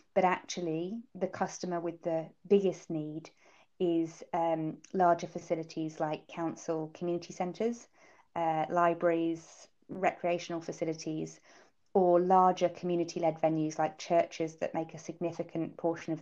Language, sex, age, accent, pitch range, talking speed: English, female, 20-39, British, 155-175 Hz, 120 wpm